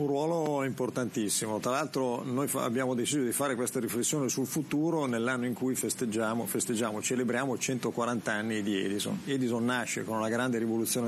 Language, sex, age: Italian, male, 40-59